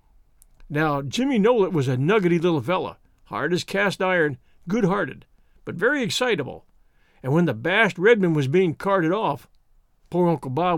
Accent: American